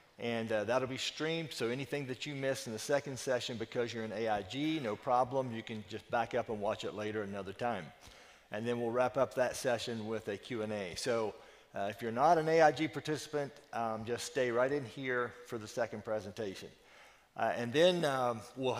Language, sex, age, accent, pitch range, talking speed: English, male, 40-59, American, 110-140 Hz, 205 wpm